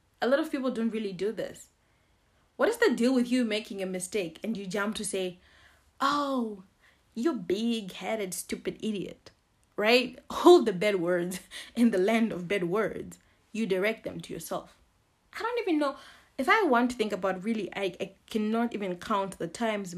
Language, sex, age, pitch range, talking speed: English, female, 30-49, 185-240 Hz, 185 wpm